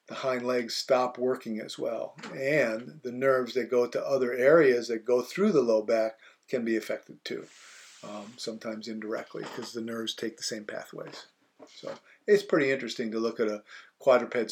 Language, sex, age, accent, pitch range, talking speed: English, male, 50-69, American, 110-135 Hz, 180 wpm